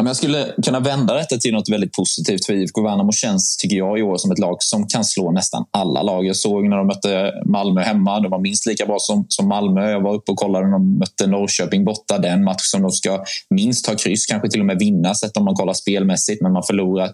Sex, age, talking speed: male, 20-39, 250 wpm